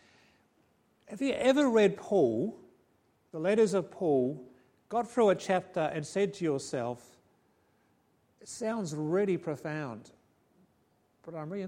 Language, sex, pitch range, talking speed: English, male, 145-185 Hz, 125 wpm